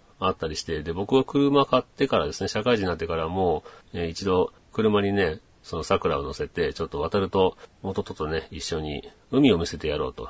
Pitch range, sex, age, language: 80-105 Hz, male, 40-59, Japanese